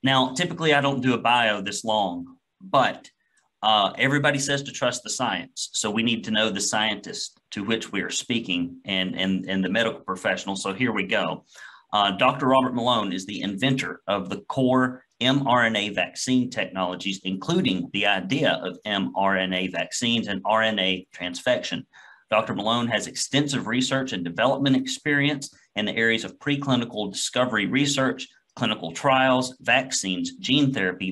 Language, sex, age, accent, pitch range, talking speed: English, male, 40-59, American, 100-130 Hz, 155 wpm